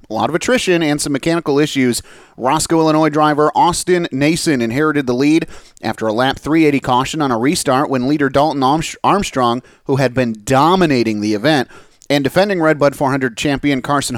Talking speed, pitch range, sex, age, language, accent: 175 wpm, 130-160 Hz, male, 30-49, English, American